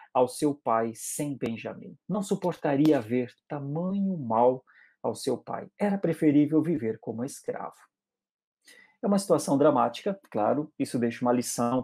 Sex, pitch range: male, 125-170 Hz